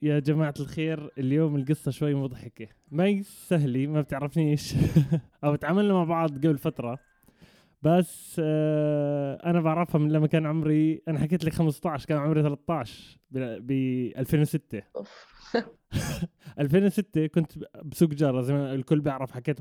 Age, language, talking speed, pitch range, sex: 20-39, Arabic, 130 wpm, 140-165 Hz, male